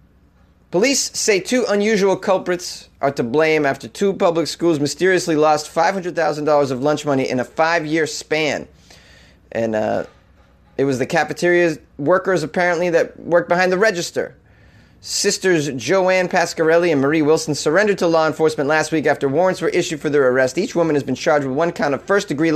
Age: 30-49